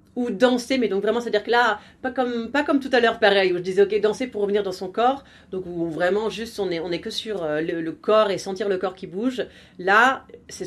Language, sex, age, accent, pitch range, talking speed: French, female, 30-49, French, 190-240 Hz, 270 wpm